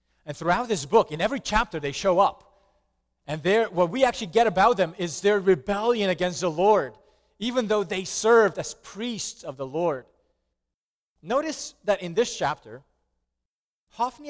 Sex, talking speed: male, 165 wpm